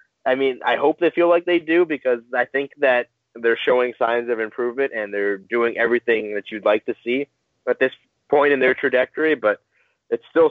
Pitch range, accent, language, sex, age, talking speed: 115-170 Hz, American, English, male, 20-39, 205 wpm